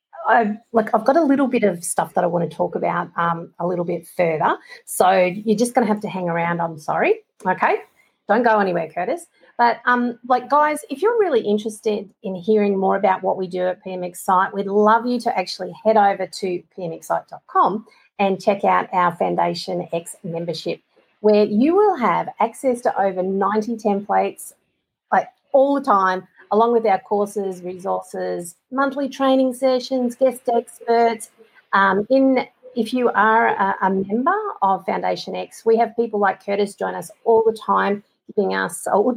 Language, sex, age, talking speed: English, female, 40-59, 180 wpm